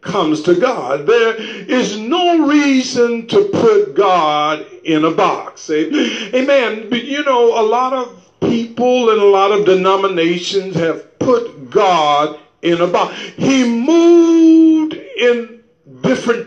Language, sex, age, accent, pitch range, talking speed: English, male, 50-69, American, 220-325 Hz, 130 wpm